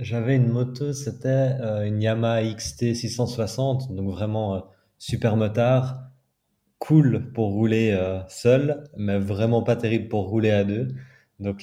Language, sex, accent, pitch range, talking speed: French, male, French, 100-120 Hz, 140 wpm